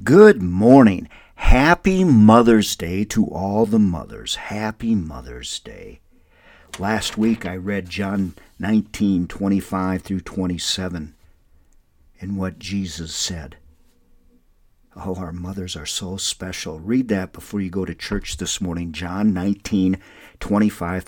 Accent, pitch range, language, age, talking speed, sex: American, 85-105 Hz, English, 50-69, 120 wpm, male